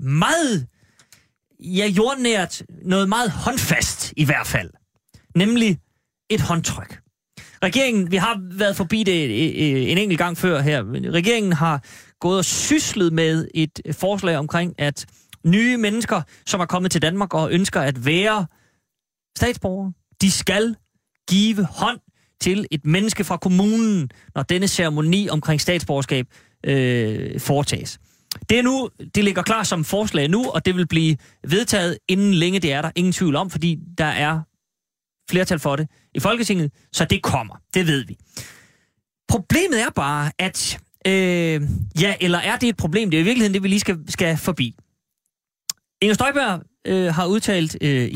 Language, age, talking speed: Danish, 30-49, 155 wpm